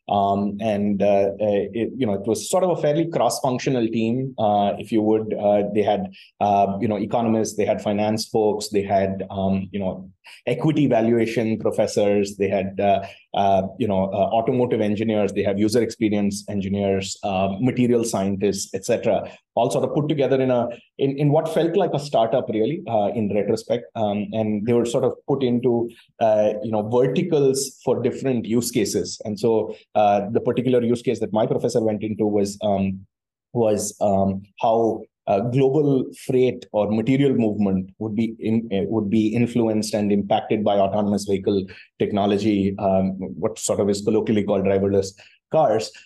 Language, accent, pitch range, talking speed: English, Indian, 100-120 Hz, 175 wpm